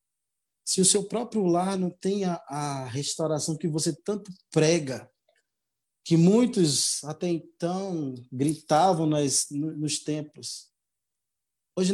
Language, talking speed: Portuguese, 120 wpm